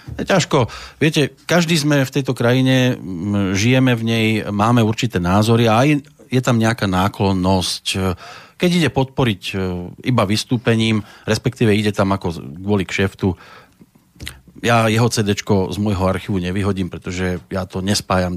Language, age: Slovak, 40-59